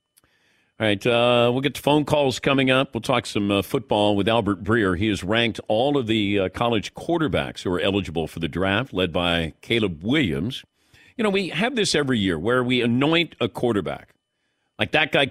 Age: 50-69